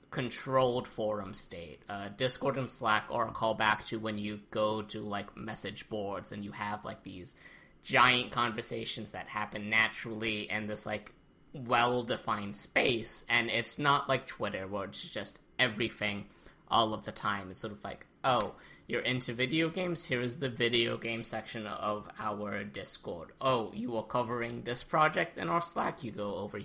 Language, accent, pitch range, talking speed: English, American, 105-125 Hz, 170 wpm